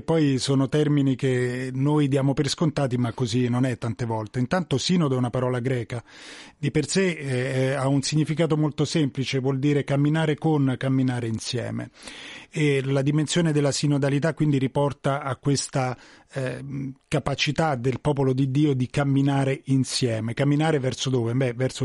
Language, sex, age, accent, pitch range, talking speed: Italian, male, 30-49, native, 125-150 Hz, 160 wpm